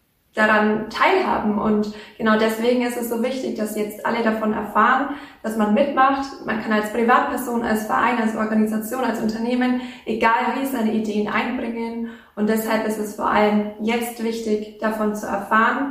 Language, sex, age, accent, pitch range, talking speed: German, female, 20-39, German, 215-245 Hz, 160 wpm